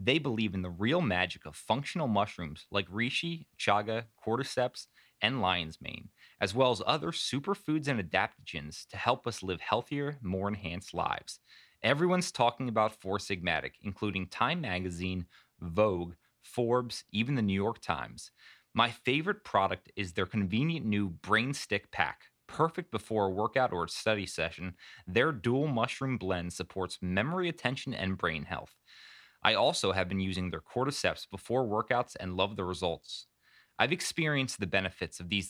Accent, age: American, 30-49